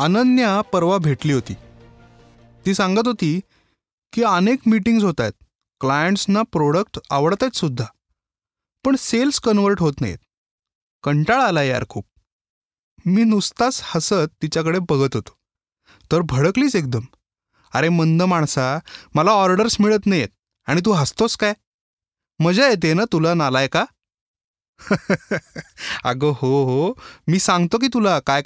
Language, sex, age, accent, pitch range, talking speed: Marathi, male, 20-39, native, 135-210 Hz, 130 wpm